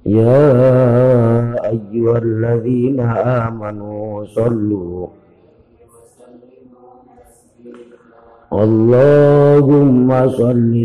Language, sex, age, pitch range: Indonesian, male, 50-69, 115-140 Hz